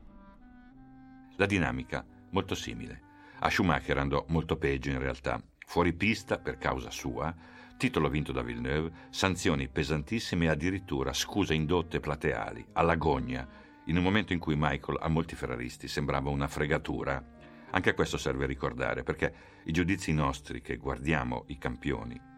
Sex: male